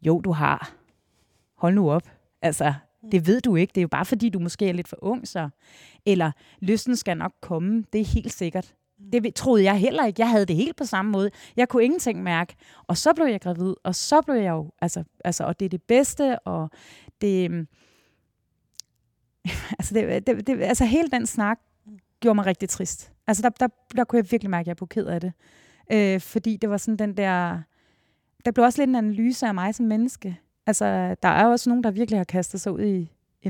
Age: 30-49